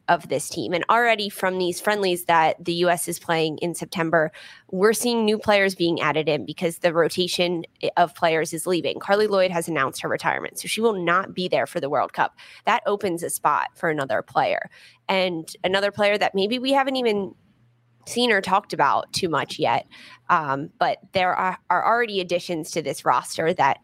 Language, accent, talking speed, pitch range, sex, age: English, American, 195 wpm, 165-200 Hz, female, 20-39